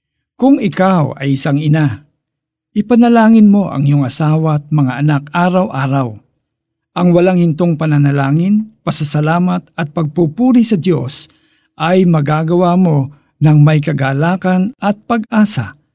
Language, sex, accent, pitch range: Filipino, male, native, 140-170 Hz